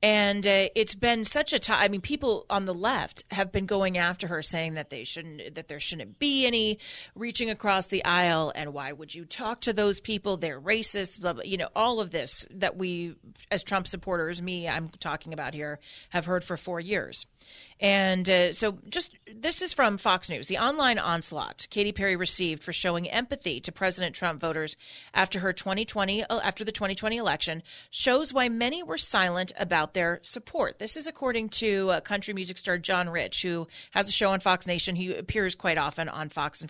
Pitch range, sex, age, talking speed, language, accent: 170-215 Hz, female, 30-49, 205 wpm, English, American